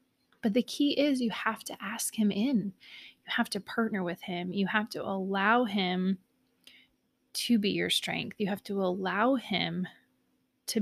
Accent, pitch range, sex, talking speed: American, 185-235 Hz, female, 170 wpm